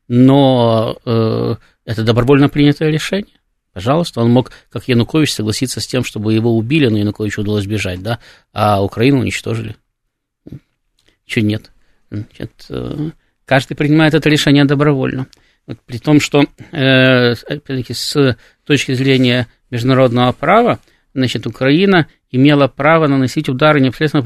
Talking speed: 125 wpm